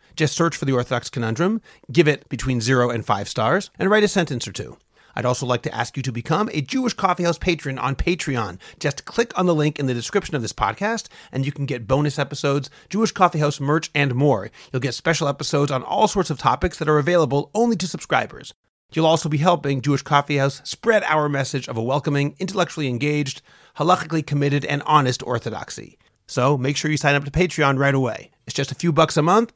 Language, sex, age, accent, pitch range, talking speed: English, male, 40-59, American, 130-170 Hz, 215 wpm